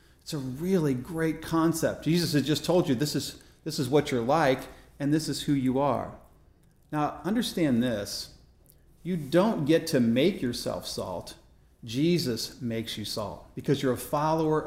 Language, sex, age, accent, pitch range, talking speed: English, male, 40-59, American, 120-165 Hz, 170 wpm